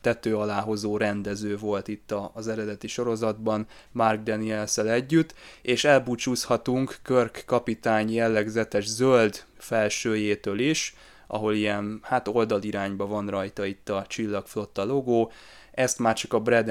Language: Hungarian